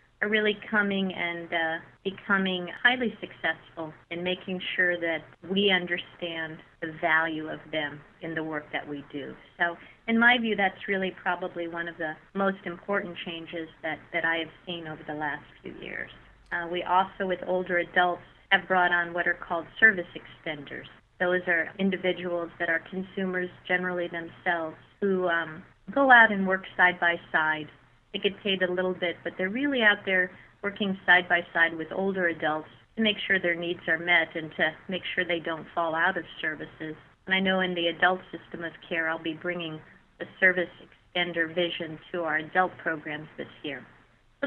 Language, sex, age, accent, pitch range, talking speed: English, female, 40-59, American, 165-190 Hz, 185 wpm